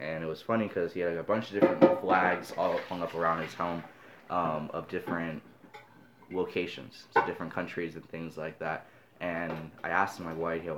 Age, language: 20-39, English